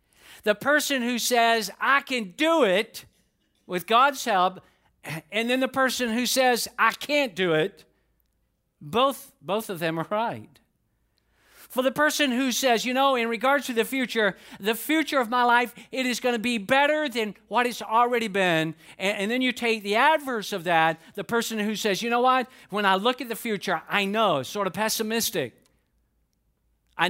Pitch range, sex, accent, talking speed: 180-245 Hz, male, American, 185 wpm